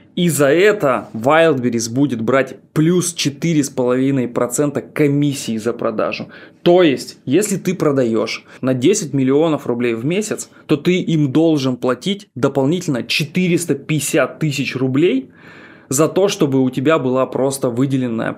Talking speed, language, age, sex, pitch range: 125 wpm, Russian, 20-39, male, 135-180 Hz